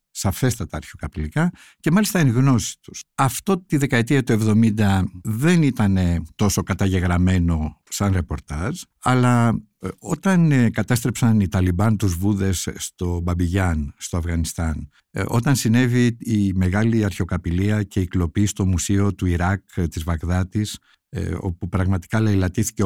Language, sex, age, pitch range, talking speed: Greek, male, 60-79, 90-125 Hz, 120 wpm